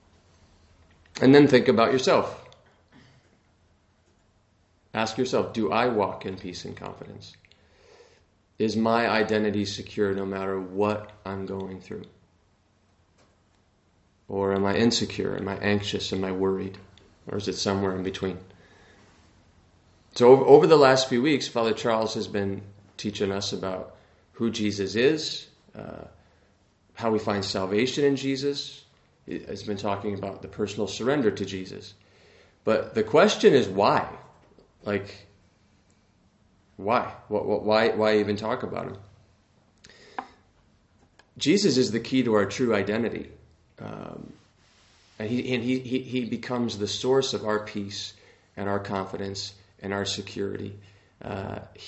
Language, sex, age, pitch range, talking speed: English, male, 40-59, 95-110 Hz, 135 wpm